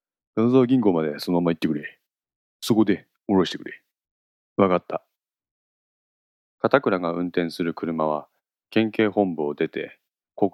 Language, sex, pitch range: Japanese, male, 75-100 Hz